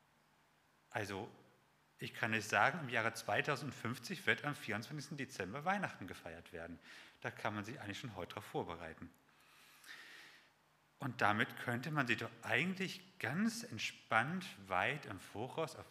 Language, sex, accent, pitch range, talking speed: German, male, German, 105-135 Hz, 140 wpm